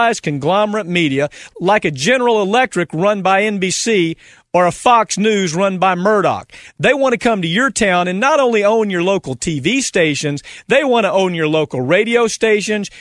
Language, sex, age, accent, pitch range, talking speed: English, male, 40-59, American, 175-235 Hz, 180 wpm